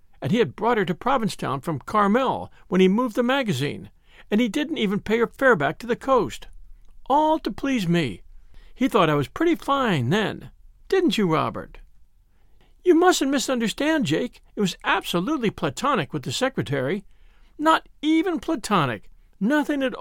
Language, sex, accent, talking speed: English, male, American, 165 wpm